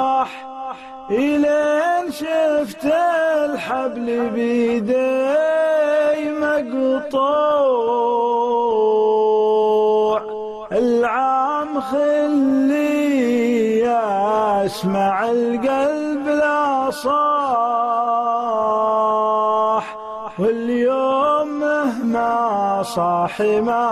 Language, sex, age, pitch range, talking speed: Arabic, male, 30-49, 220-295 Hz, 40 wpm